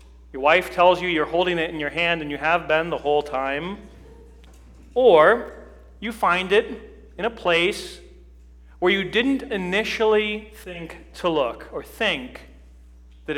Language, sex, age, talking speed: English, male, 40-59, 150 wpm